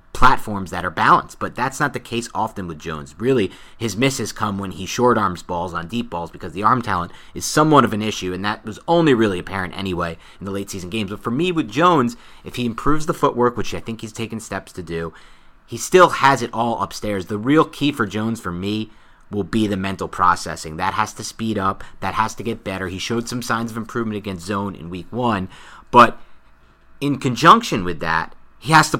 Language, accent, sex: English, American, male